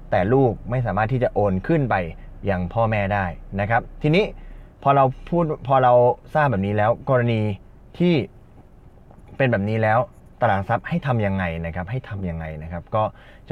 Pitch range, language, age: 90-120 Hz, Thai, 20-39